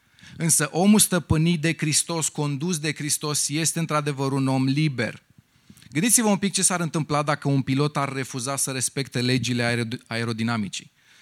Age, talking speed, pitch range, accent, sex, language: 30-49, 150 wpm, 125-160 Hz, native, male, Romanian